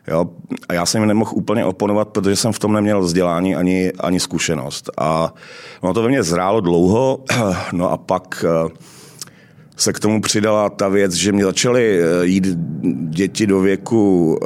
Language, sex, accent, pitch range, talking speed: Czech, male, native, 80-95 Hz, 165 wpm